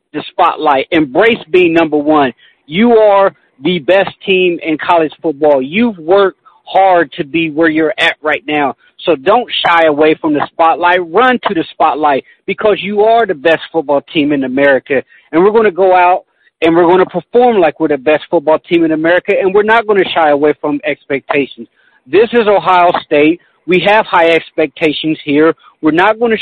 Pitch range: 155-200 Hz